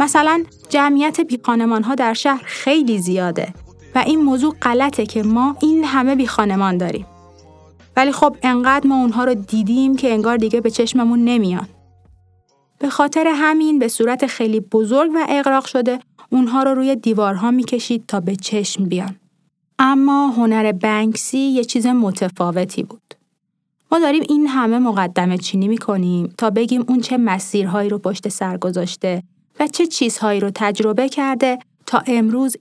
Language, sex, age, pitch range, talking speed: Persian, female, 30-49, 200-265 Hz, 150 wpm